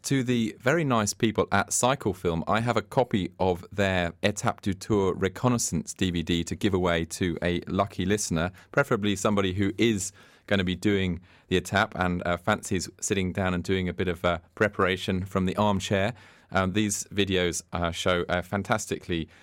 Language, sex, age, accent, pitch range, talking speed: English, male, 30-49, British, 85-105 Hz, 175 wpm